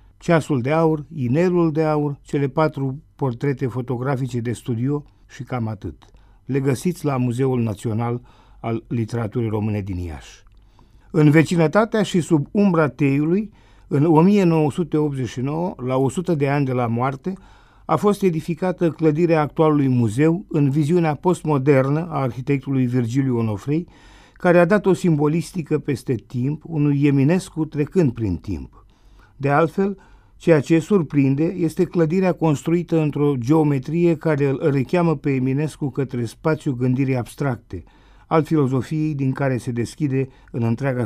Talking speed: 135 wpm